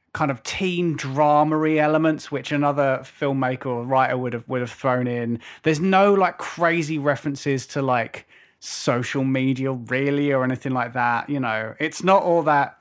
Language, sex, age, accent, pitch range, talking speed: English, male, 20-39, British, 130-170 Hz, 170 wpm